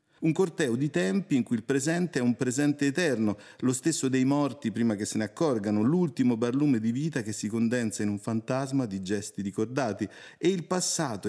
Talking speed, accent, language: 195 wpm, native, Italian